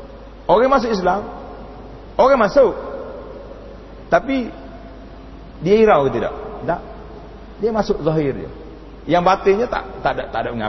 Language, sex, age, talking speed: Malay, male, 40-59, 120 wpm